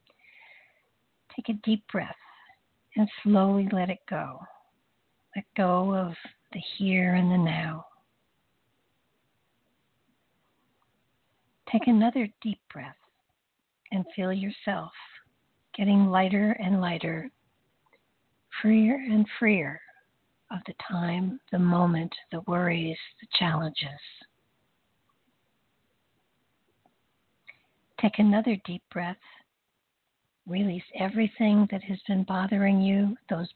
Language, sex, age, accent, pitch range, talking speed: English, female, 60-79, American, 180-215 Hz, 95 wpm